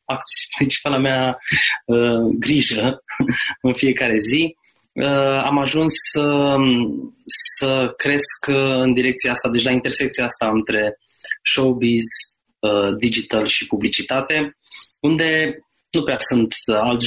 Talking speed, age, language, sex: 110 wpm, 20-39, Romanian, male